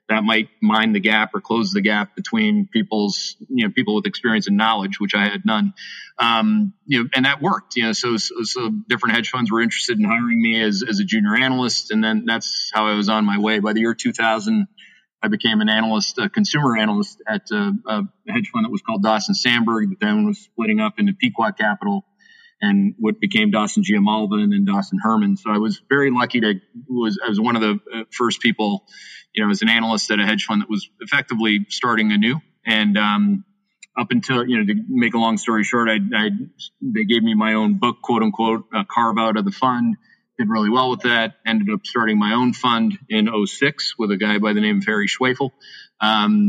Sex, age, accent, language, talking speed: male, 40-59, American, English, 225 wpm